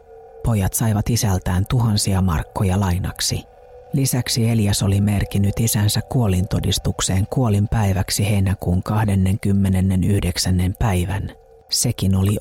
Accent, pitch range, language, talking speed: native, 95-110 Hz, Finnish, 85 wpm